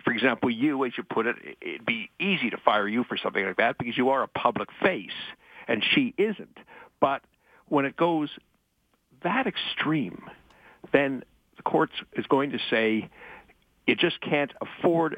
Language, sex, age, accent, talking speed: English, male, 60-79, American, 170 wpm